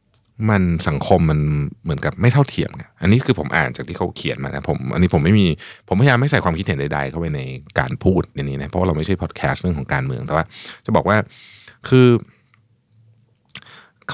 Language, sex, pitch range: Thai, male, 80-120 Hz